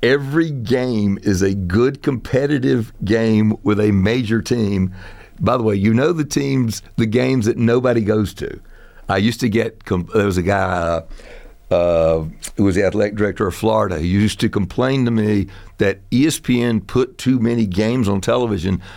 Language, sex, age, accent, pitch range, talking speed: English, male, 60-79, American, 100-125 Hz, 170 wpm